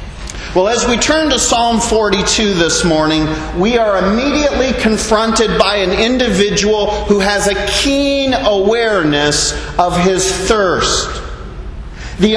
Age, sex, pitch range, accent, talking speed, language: 40-59, male, 185-240 Hz, American, 120 wpm, English